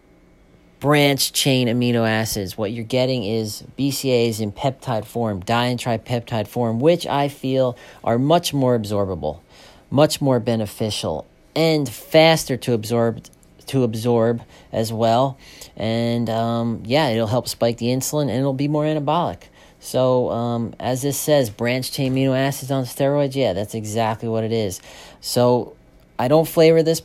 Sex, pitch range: male, 110-135 Hz